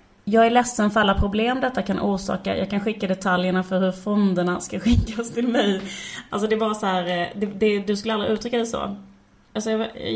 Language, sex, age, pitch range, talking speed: Swedish, female, 30-49, 185-225 Hz, 215 wpm